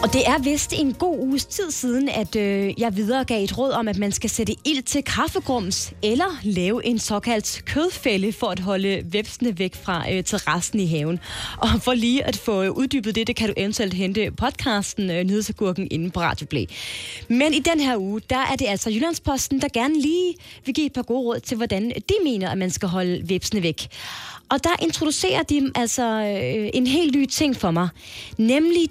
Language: Danish